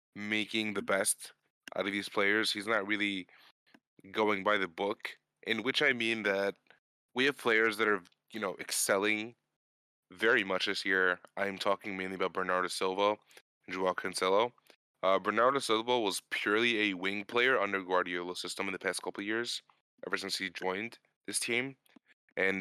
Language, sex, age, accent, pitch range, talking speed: English, male, 20-39, American, 95-110 Hz, 170 wpm